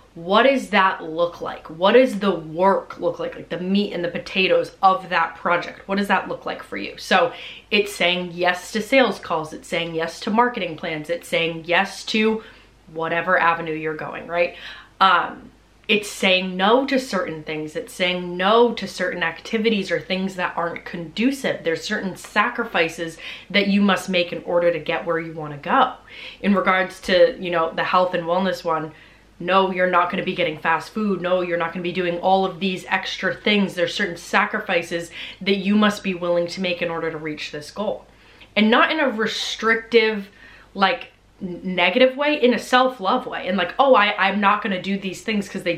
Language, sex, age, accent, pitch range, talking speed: English, female, 20-39, American, 170-210 Hz, 200 wpm